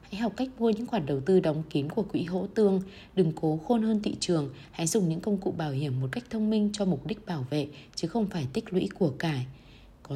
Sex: female